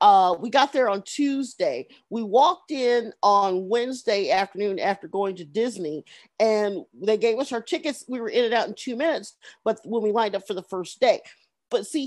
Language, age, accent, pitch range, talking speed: English, 40-59, American, 215-320 Hz, 205 wpm